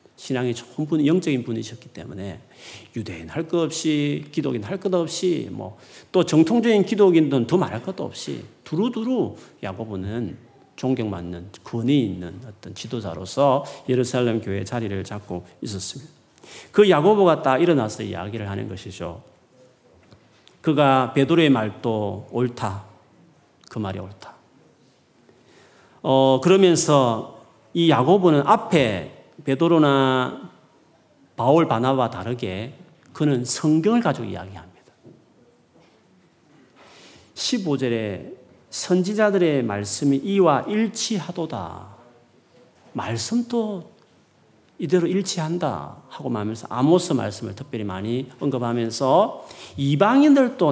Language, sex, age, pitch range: Korean, male, 40-59, 110-165 Hz